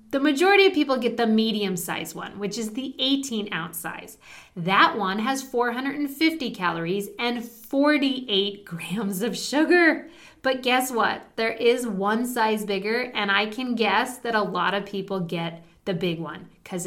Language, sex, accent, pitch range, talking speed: English, female, American, 200-260 Hz, 165 wpm